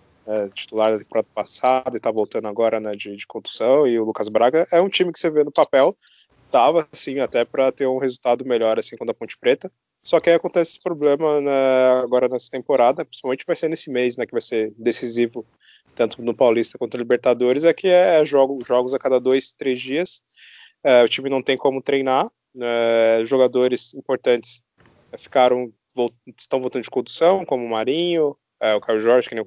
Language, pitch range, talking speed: Portuguese, 115-145 Hz, 210 wpm